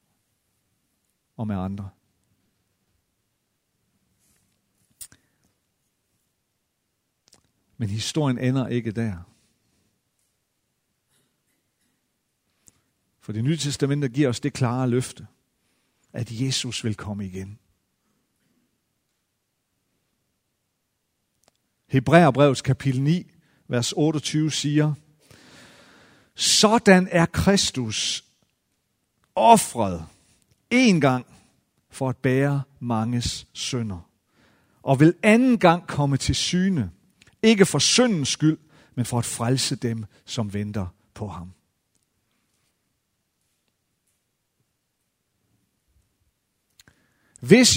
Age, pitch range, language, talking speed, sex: 50-69, 105-165 Hz, Danish, 75 wpm, male